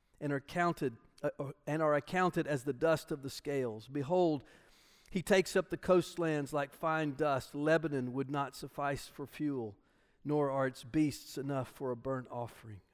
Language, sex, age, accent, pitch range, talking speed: English, male, 50-69, American, 140-180 Hz, 160 wpm